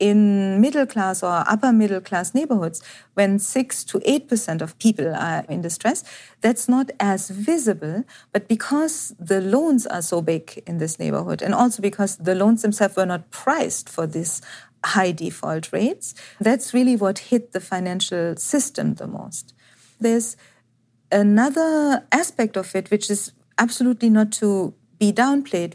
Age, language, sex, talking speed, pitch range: 40-59, English, female, 155 wpm, 190-235 Hz